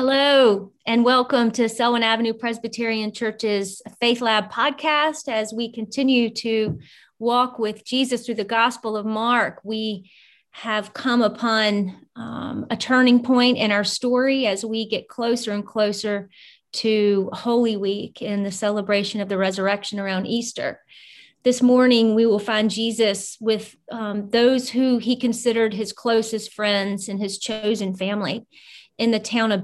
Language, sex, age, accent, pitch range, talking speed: English, female, 30-49, American, 210-240 Hz, 150 wpm